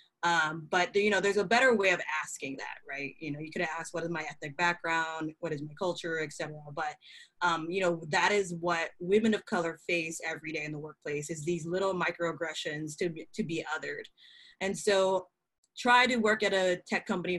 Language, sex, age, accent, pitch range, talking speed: English, female, 20-39, American, 160-190 Hz, 210 wpm